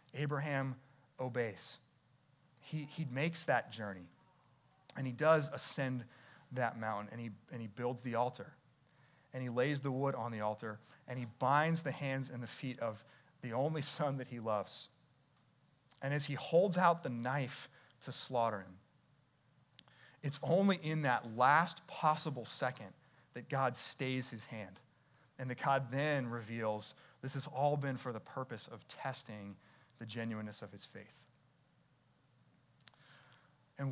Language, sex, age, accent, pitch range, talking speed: English, male, 30-49, American, 120-150 Hz, 150 wpm